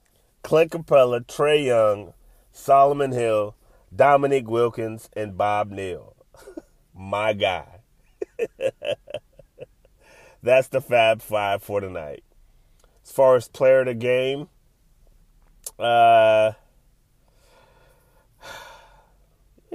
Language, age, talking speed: English, 30-49, 80 wpm